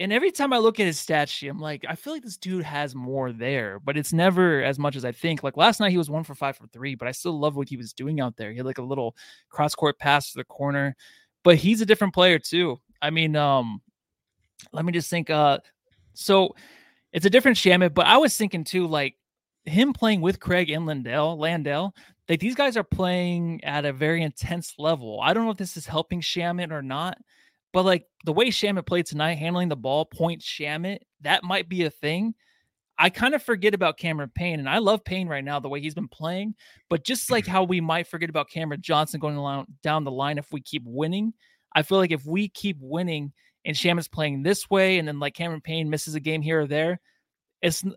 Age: 20-39